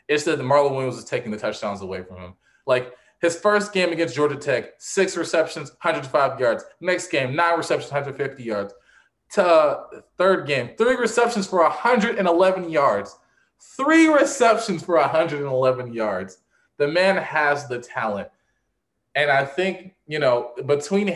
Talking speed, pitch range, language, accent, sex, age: 145 wpm, 120-175 Hz, English, American, male, 20-39